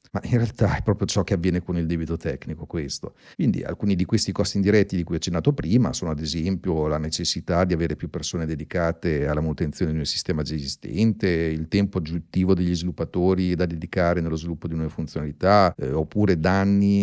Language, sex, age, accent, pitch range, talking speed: Italian, male, 40-59, native, 80-100 Hz, 195 wpm